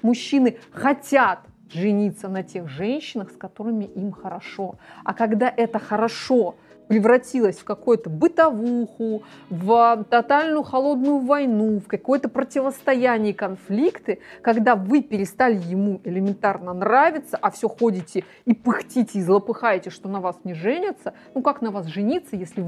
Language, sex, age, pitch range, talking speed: Russian, female, 30-49, 200-255 Hz, 130 wpm